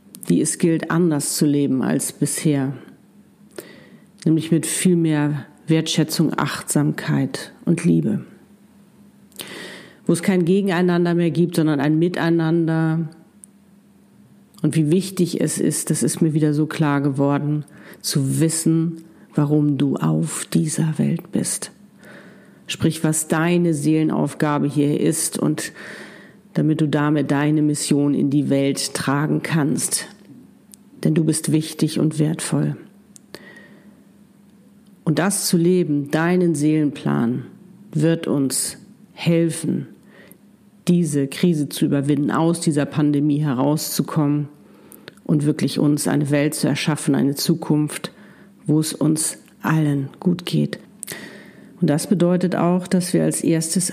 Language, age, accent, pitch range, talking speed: German, 50-69, German, 150-185 Hz, 120 wpm